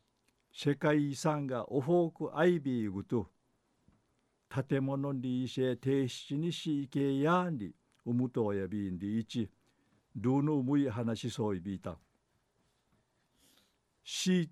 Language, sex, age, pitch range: Japanese, male, 50-69, 115-150 Hz